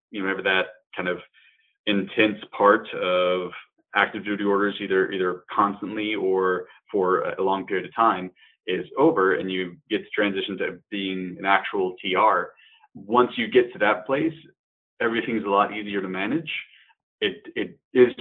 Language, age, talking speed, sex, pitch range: English, 20-39, 160 wpm, male, 95-110 Hz